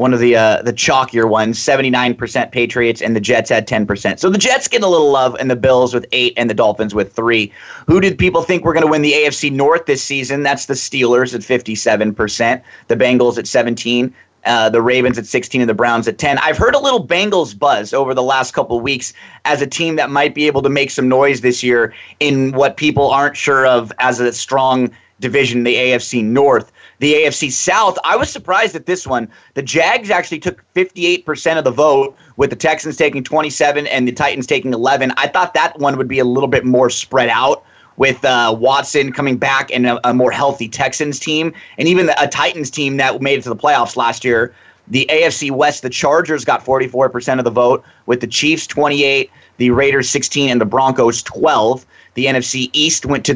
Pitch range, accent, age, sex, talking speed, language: 125-145 Hz, American, 30-49, male, 215 wpm, English